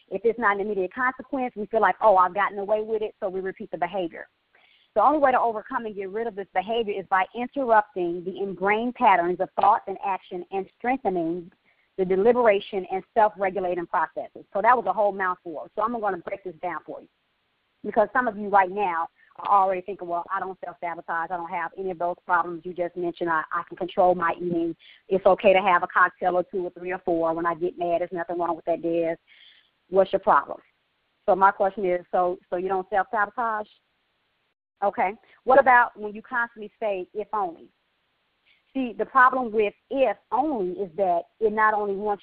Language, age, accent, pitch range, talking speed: English, 40-59, American, 180-230 Hz, 210 wpm